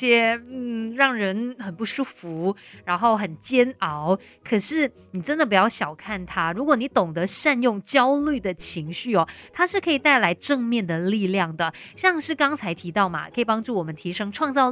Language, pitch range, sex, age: Chinese, 190-270 Hz, female, 30-49